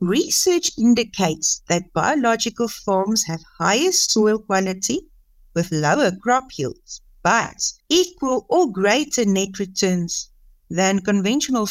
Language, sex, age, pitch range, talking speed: English, female, 60-79, 185-245 Hz, 110 wpm